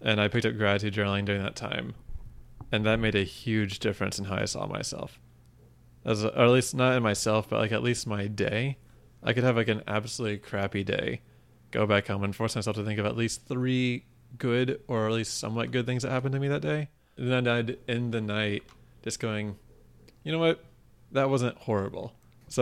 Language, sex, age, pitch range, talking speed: English, male, 20-39, 105-120 Hz, 215 wpm